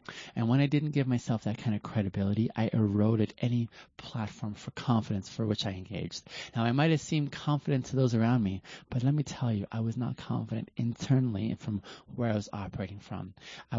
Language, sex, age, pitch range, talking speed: English, male, 30-49, 100-130 Hz, 205 wpm